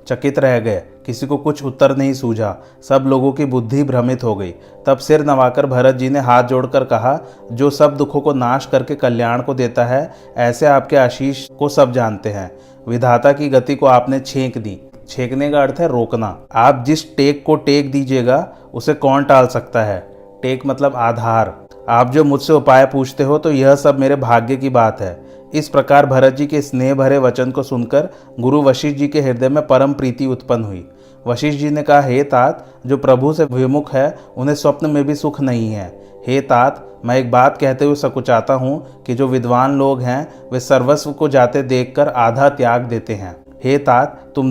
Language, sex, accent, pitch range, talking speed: Hindi, male, native, 120-140 Hz, 195 wpm